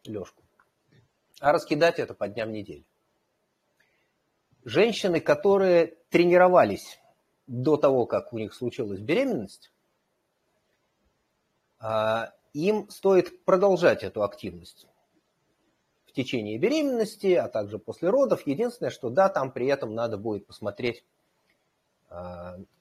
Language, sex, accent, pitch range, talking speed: Russian, male, native, 105-170 Hz, 95 wpm